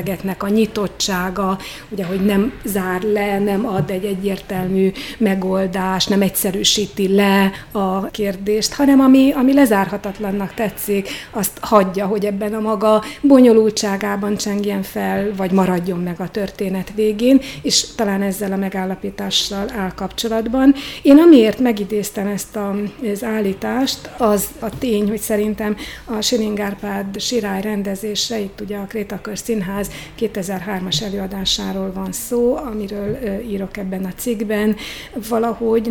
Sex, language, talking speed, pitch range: female, Hungarian, 125 wpm, 195-220 Hz